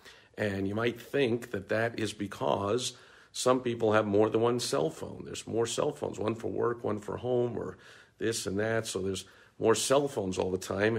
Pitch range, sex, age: 100-120 Hz, male, 50-69